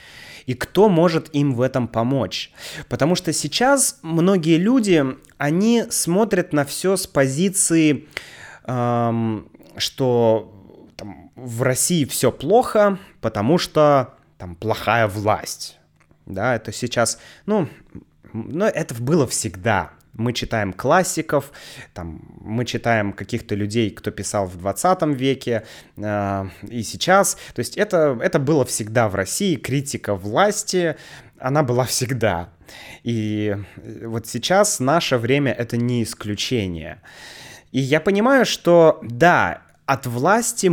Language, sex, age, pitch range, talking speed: Russian, male, 20-39, 110-155 Hz, 115 wpm